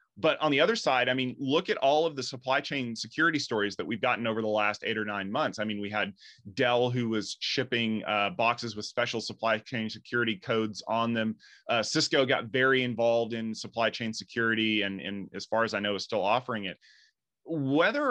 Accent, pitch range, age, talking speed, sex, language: American, 105-130 Hz, 30-49, 215 wpm, male, English